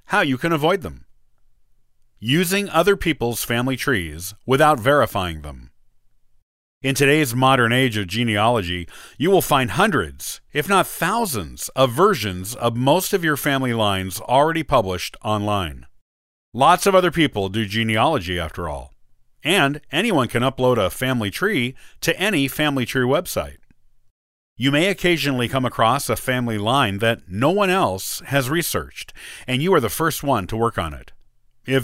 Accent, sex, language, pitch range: American, male, English, 110-150 Hz